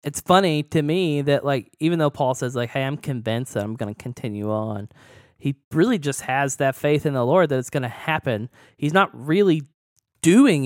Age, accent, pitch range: 20-39, American, 125-155 Hz